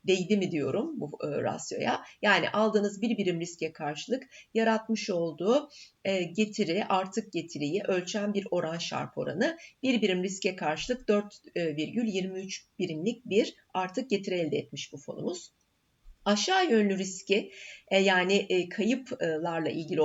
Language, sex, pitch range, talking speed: Turkish, female, 165-230 Hz, 130 wpm